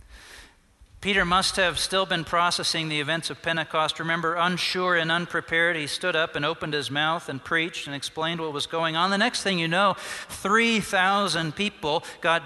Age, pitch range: 40-59, 155-205 Hz